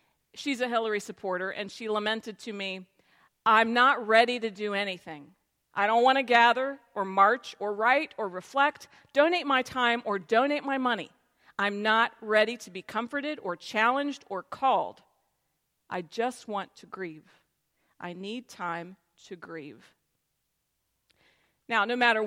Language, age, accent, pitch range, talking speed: English, 40-59, American, 205-255 Hz, 150 wpm